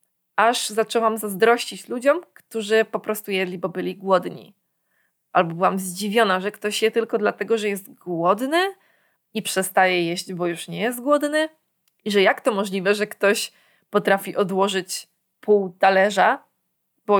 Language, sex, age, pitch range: Polish, female, 20-39, 190-235 Hz